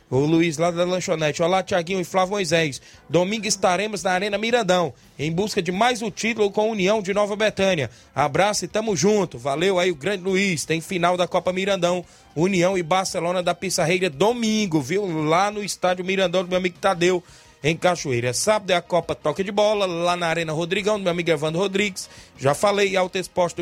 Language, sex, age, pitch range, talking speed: Portuguese, male, 20-39, 170-200 Hz, 200 wpm